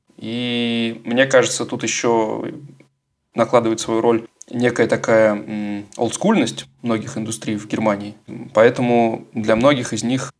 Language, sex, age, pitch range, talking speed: Russian, male, 20-39, 110-125 Hz, 115 wpm